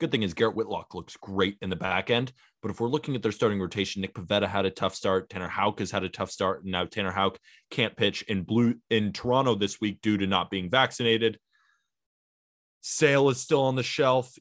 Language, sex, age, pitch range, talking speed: English, male, 20-39, 100-125 Hz, 230 wpm